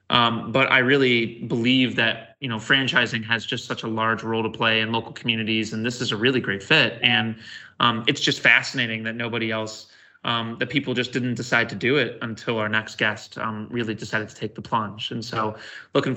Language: English